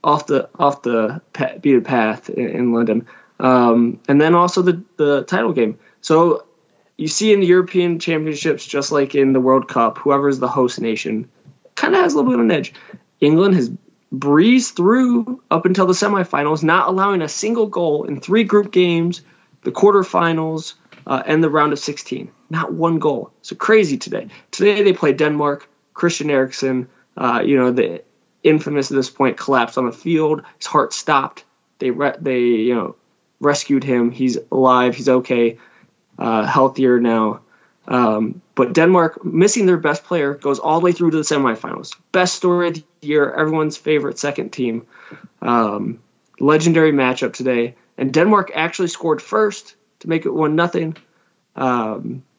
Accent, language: American, English